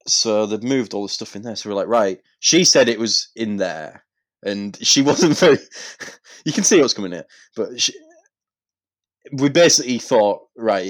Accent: British